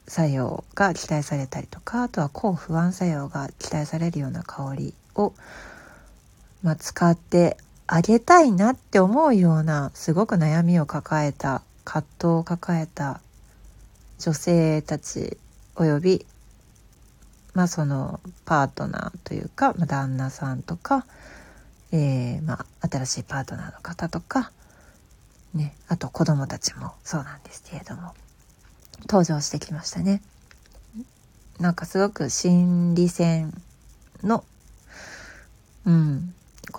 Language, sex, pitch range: Japanese, female, 145-190 Hz